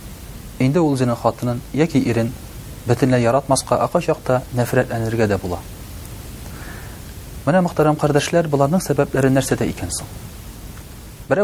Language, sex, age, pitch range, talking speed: Russian, male, 40-59, 105-140 Hz, 115 wpm